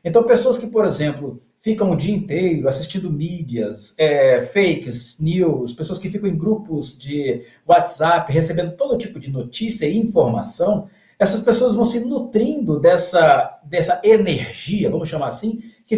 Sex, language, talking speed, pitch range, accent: male, English, 145 wpm, 160-230 Hz, Brazilian